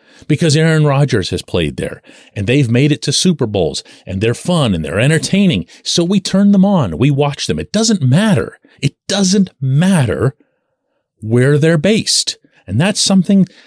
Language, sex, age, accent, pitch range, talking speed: English, male, 40-59, American, 125-205 Hz, 170 wpm